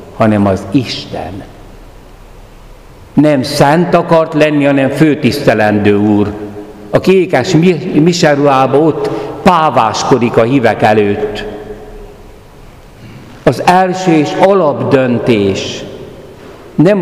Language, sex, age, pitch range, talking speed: Hungarian, male, 60-79, 105-140 Hz, 80 wpm